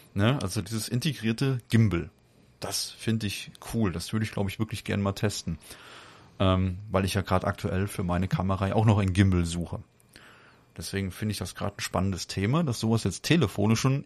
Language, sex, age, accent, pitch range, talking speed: German, male, 30-49, German, 95-115 Hz, 195 wpm